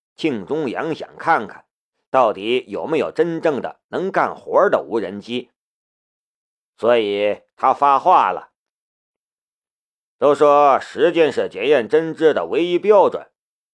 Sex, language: male, Chinese